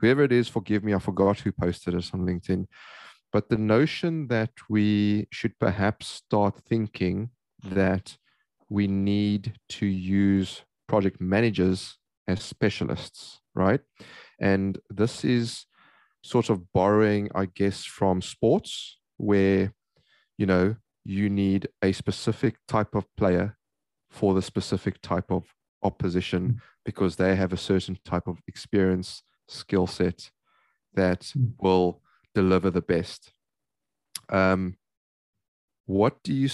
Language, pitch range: English, 95-115 Hz